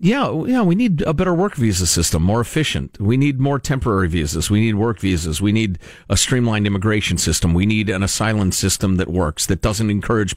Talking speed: 210 wpm